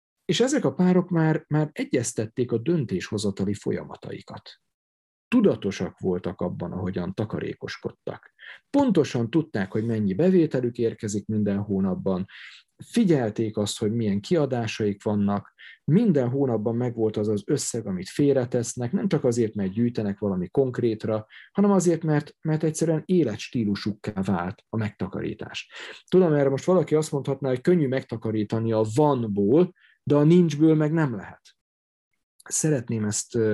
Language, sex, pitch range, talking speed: Hungarian, male, 105-155 Hz, 130 wpm